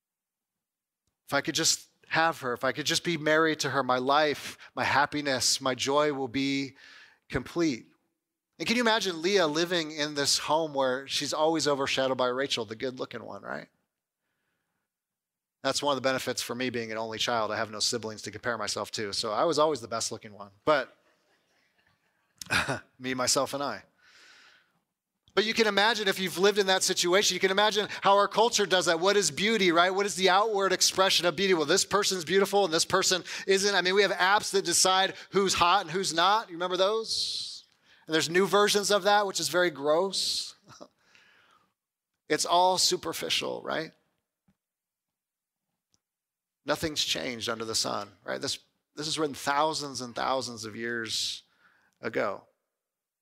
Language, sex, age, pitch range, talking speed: English, male, 30-49, 125-185 Hz, 175 wpm